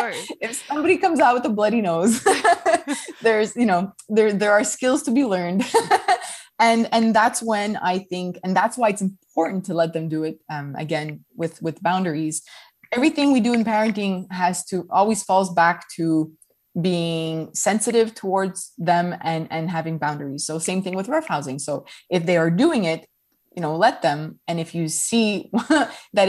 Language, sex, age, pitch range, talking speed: English, female, 20-39, 170-225 Hz, 180 wpm